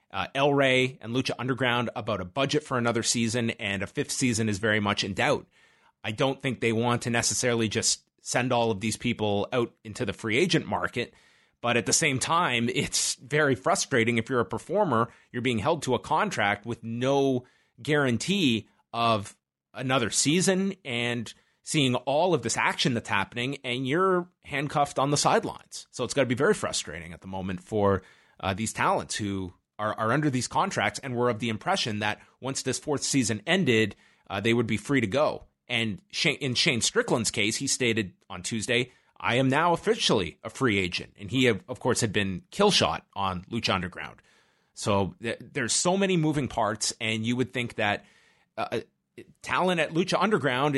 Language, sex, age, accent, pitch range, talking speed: English, male, 30-49, American, 105-135 Hz, 185 wpm